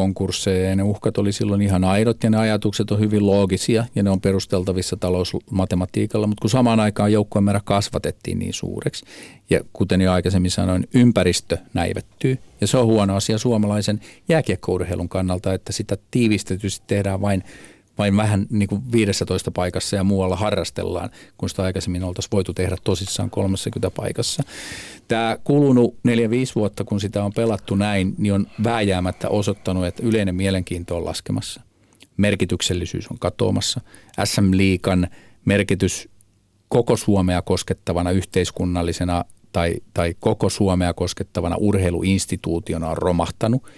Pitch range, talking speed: 95-110 Hz, 135 wpm